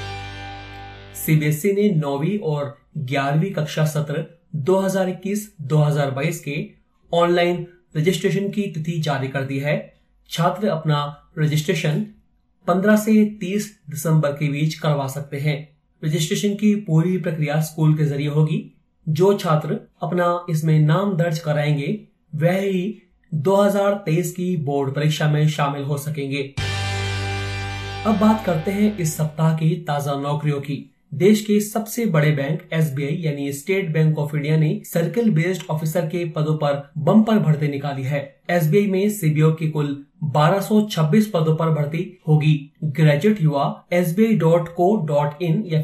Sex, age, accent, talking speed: male, 30-49, native, 130 wpm